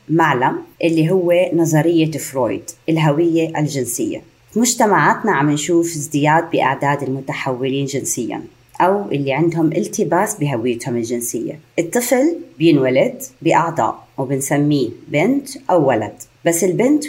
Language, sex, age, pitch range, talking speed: Arabic, female, 30-49, 150-185 Hz, 100 wpm